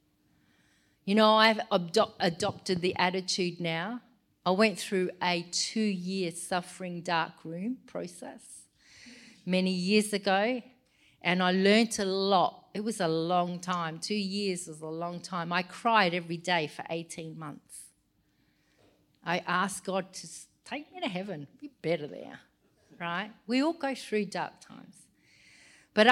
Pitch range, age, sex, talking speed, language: 175-210 Hz, 40-59, female, 145 wpm, English